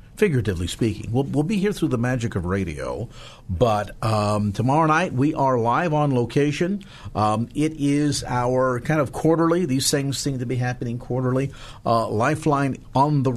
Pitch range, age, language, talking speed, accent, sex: 115-145 Hz, 50-69, English, 170 wpm, American, male